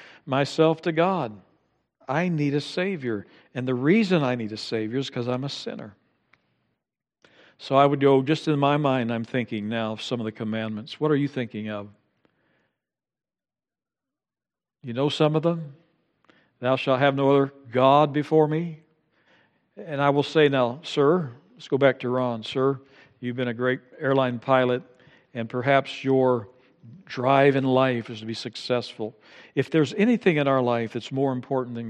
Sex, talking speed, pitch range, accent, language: male, 170 wpm, 125-155 Hz, American, English